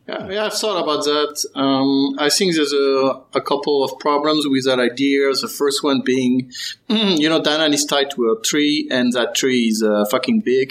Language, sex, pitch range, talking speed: English, male, 125-160 Hz, 200 wpm